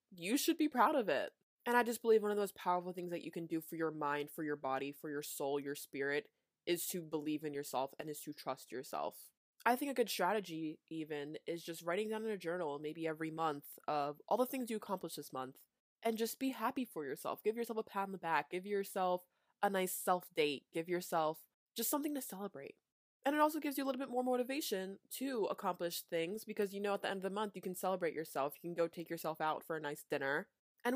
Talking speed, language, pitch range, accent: 245 wpm, English, 155-210 Hz, American